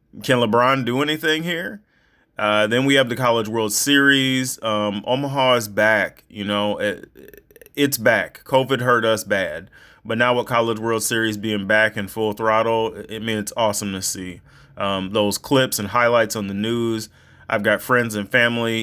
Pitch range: 110-140 Hz